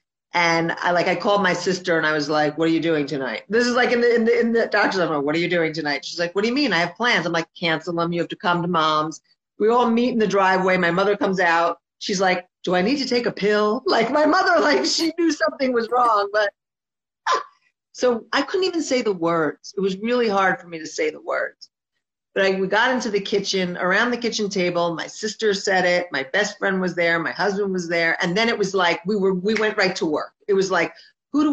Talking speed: 265 wpm